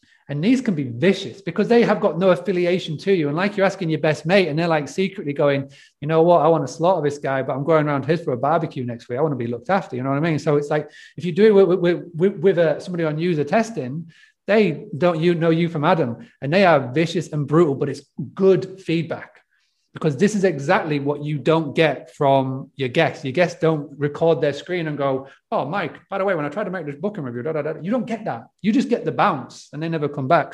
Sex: male